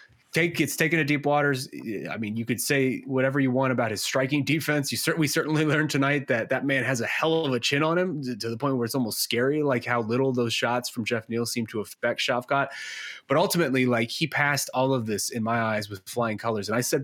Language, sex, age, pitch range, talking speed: English, male, 20-39, 110-135 Hz, 250 wpm